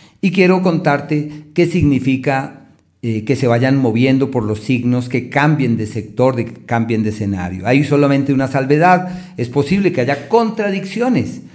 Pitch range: 120-155 Hz